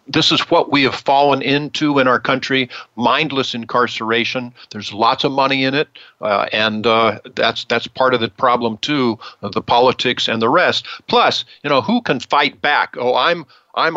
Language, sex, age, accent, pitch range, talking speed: English, male, 50-69, American, 115-135 Hz, 190 wpm